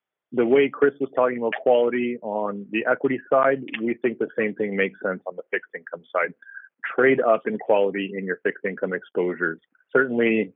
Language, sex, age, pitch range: English, male, 30-49, 105-135 Hz